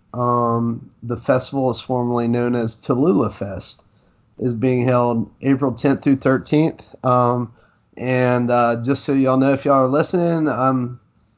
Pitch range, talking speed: 115-135 Hz, 150 wpm